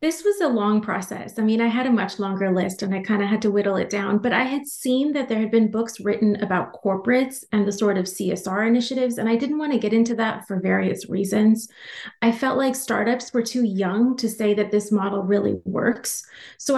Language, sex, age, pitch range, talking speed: English, female, 30-49, 205-235 Hz, 235 wpm